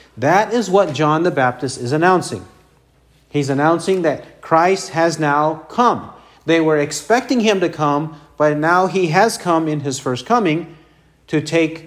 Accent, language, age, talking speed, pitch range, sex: American, English, 40-59, 160 wpm, 135-190 Hz, male